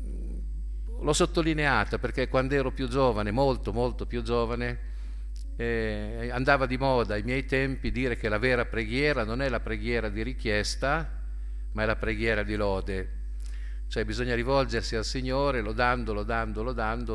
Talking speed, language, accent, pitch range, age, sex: 150 wpm, Italian, native, 80-130 Hz, 50-69, male